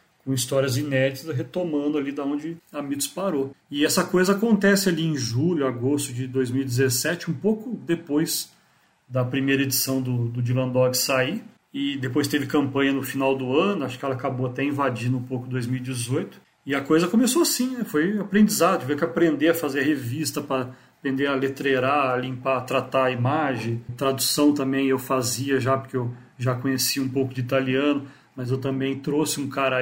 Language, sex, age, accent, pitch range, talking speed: Portuguese, male, 40-59, Brazilian, 130-150 Hz, 180 wpm